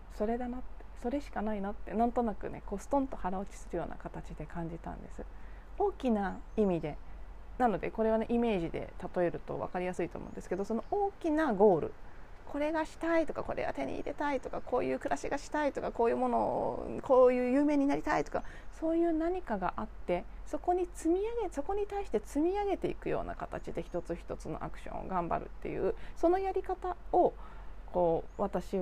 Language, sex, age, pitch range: Japanese, female, 30-49, 185-315 Hz